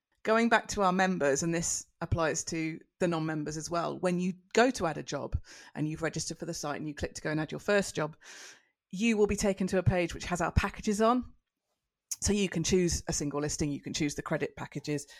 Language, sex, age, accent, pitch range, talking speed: English, female, 30-49, British, 155-190 Hz, 240 wpm